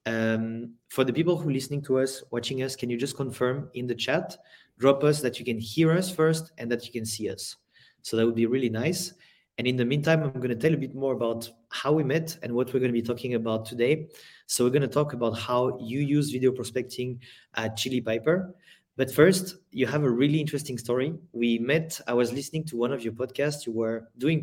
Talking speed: 240 wpm